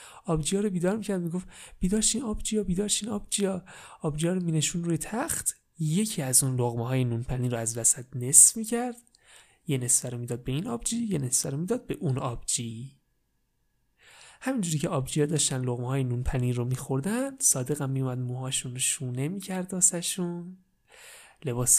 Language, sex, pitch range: Persian, male, 130-205 Hz